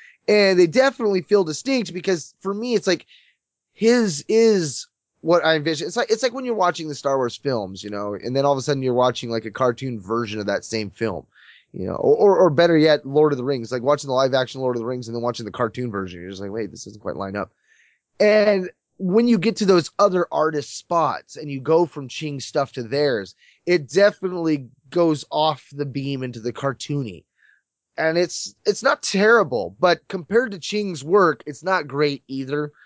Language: English